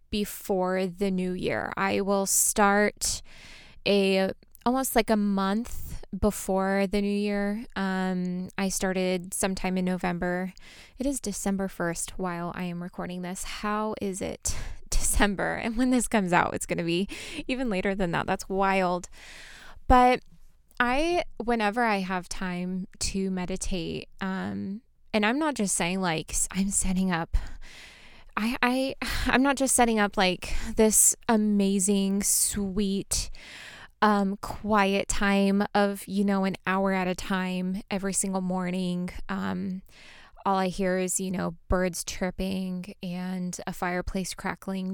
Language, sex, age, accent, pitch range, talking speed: English, female, 20-39, American, 185-210 Hz, 145 wpm